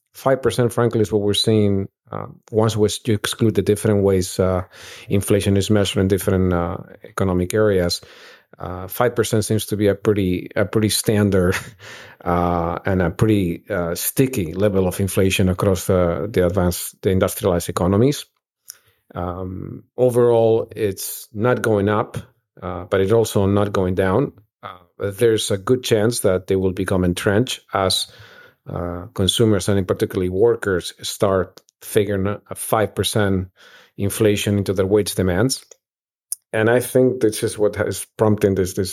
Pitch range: 95-110 Hz